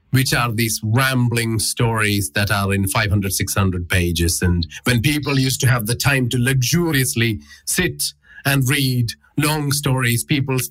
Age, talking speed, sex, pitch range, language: 30-49, 150 wpm, male, 95-135 Hz, English